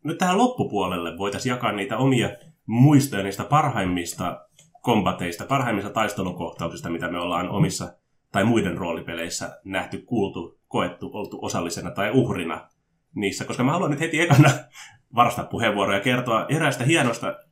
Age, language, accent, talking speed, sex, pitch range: 30-49, Finnish, native, 135 wpm, male, 95-130 Hz